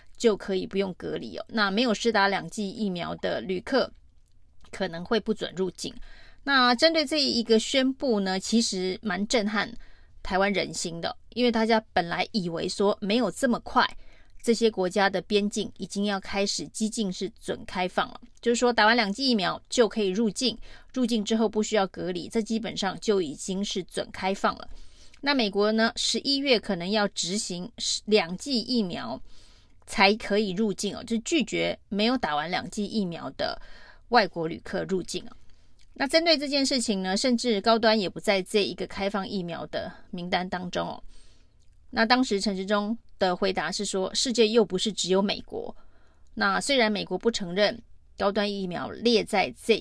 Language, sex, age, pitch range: Chinese, female, 30-49, 190-230 Hz